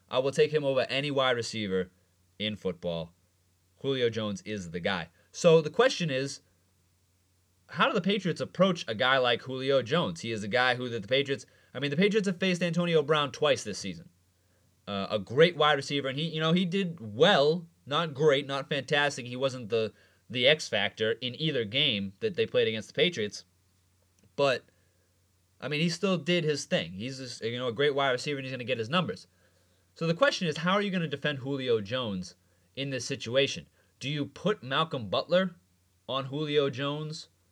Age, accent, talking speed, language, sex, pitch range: 30-49, American, 200 wpm, English, male, 95-155 Hz